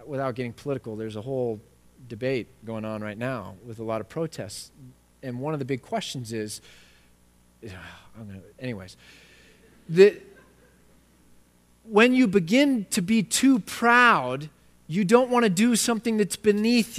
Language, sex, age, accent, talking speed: English, male, 30-49, American, 140 wpm